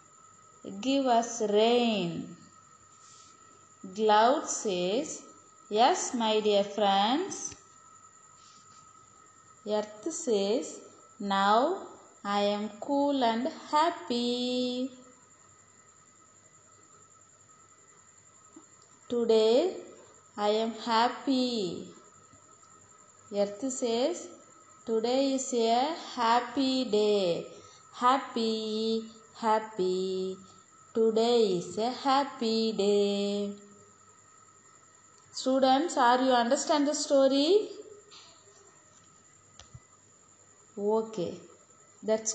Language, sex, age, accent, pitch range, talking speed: Tamil, female, 20-39, native, 220-360 Hz, 60 wpm